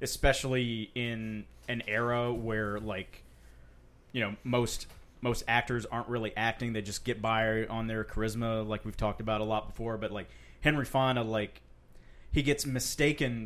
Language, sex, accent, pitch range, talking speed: English, male, American, 105-125 Hz, 160 wpm